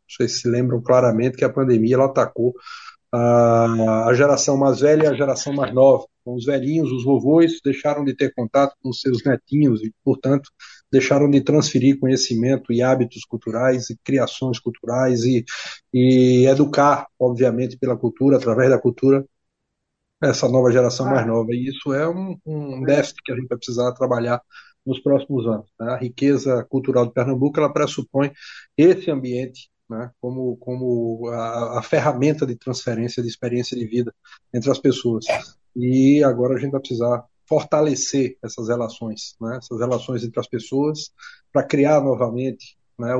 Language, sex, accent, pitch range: Portuguese, male, Brazilian, 120-140 Hz